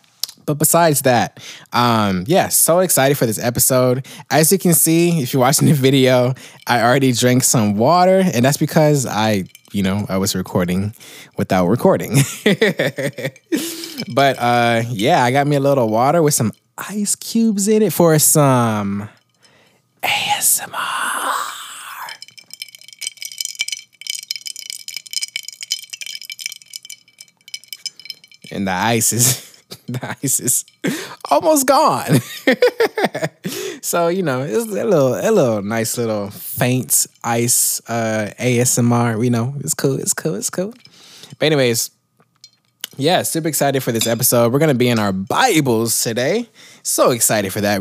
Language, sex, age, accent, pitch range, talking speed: English, male, 20-39, American, 115-185 Hz, 130 wpm